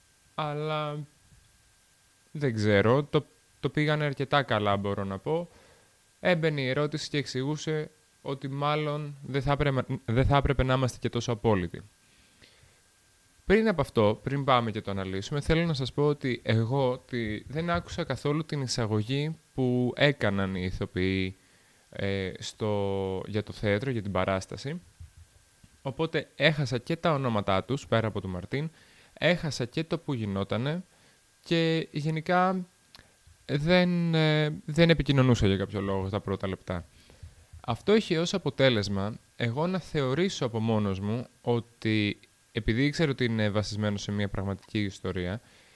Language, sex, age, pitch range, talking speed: Greek, male, 20-39, 100-150 Hz, 140 wpm